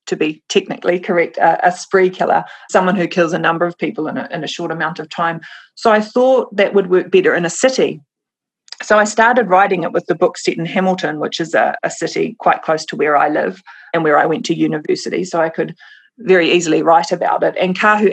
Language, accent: English, Australian